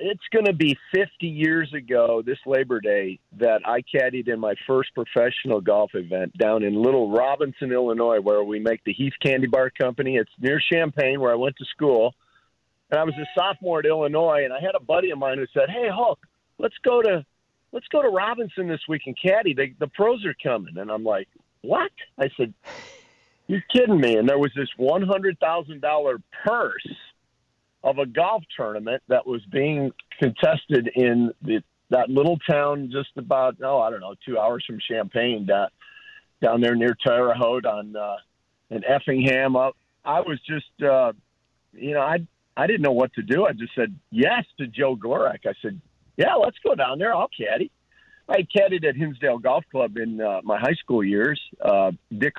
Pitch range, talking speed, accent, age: 120-165 Hz, 190 wpm, American, 50-69